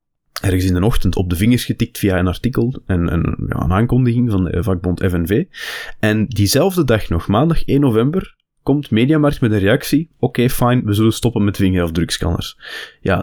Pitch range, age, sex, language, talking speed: 95-120 Hz, 20-39, male, Dutch, 185 wpm